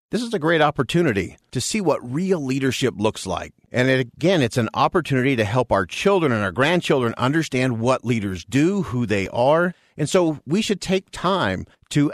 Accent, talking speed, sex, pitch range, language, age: American, 190 wpm, male, 105-150 Hz, English, 50-69